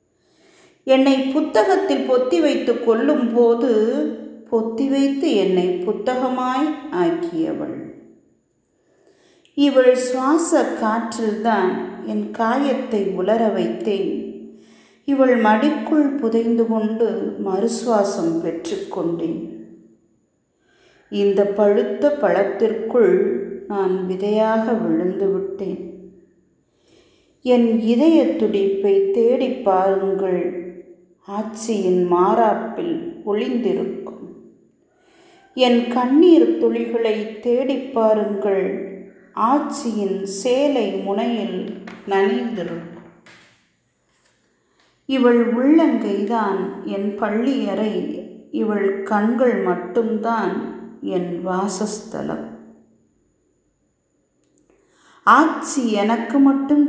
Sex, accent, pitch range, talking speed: female, native, 195-275 Hz, 65 wpm